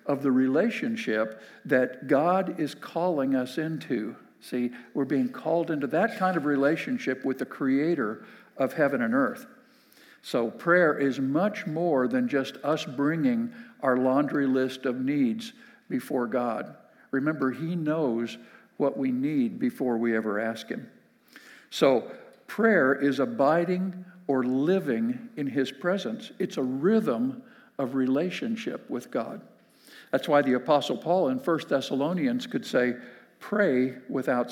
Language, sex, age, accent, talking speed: English, male, 60-79, American, 140 wpm